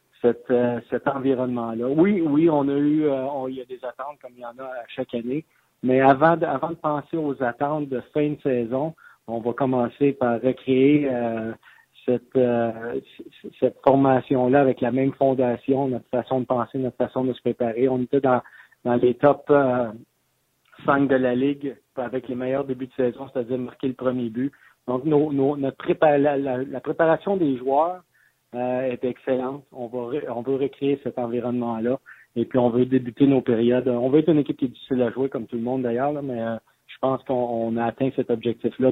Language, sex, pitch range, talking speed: French, male, 120-140 Hz, 210 wpm